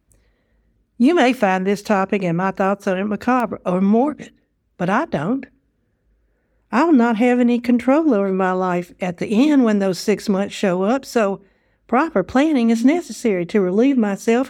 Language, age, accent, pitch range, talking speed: English, 60-79, American, 185-245 Hz, 175 wpm